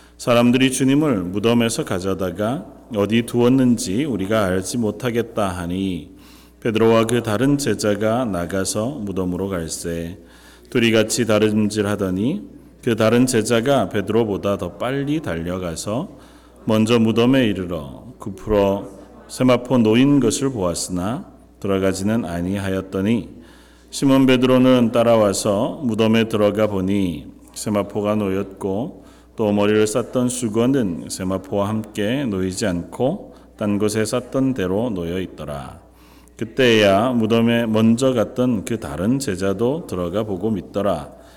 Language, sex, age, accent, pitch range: Korean, male, 40-59, native, 95-115 Hz